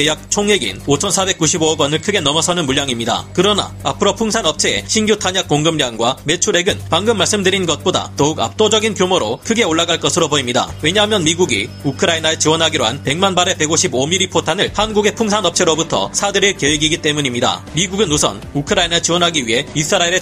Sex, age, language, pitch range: male, 30-49, Korean, 150-190 Hz